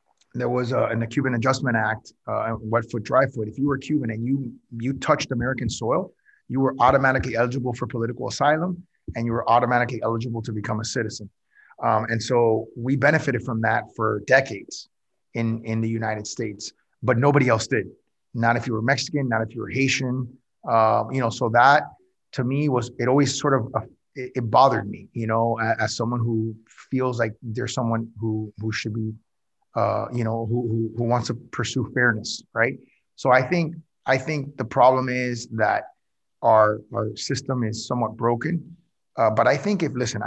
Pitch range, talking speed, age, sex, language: 115-130 Hz, 190 wpm, 30-49, male, English